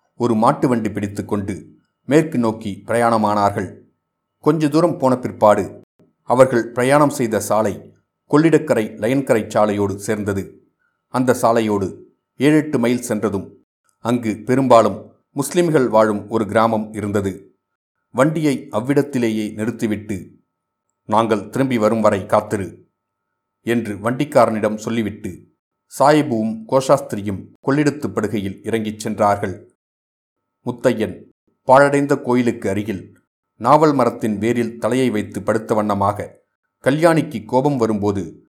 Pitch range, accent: 105-130 Hz, native